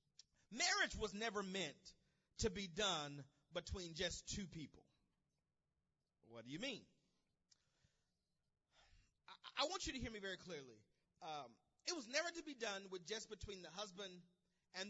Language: English